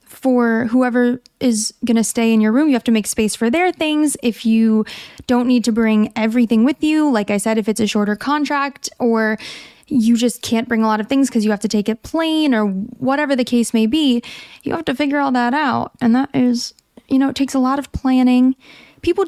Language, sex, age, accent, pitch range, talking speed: English, female, 20-39, American, 220-265 Hz, 235 wpm